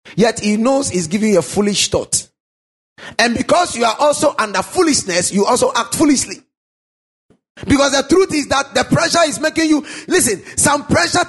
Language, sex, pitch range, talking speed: English, male, 210-330 Hz, 175 wpm